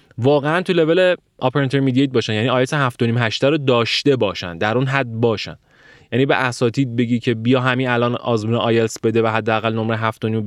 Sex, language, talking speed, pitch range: male, Persian, 185 wpm, 110-150 Hz